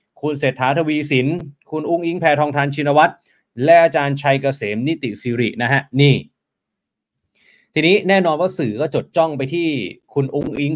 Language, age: Thai, 20-39